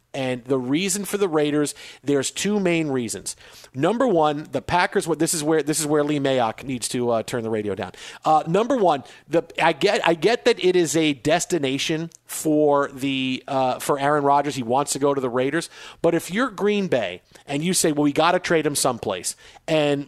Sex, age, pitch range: male, 50-69, 150-215 Hz